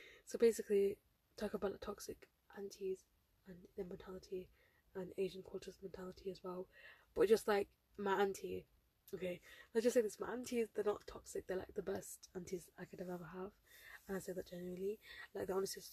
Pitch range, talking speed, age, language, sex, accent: 185-210 Hz, 185 wpm, 10-29, English, female, British